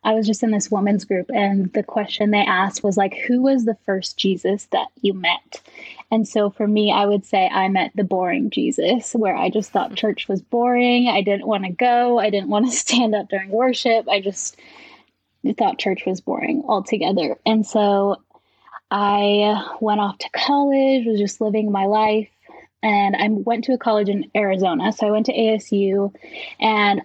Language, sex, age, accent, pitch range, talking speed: English, female, 10-29, American, 200-230 Hz, 195 wpm